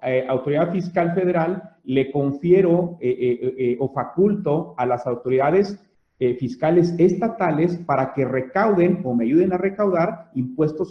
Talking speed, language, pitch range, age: 140 wpm, Spanish, 125-165 Hz, 40-59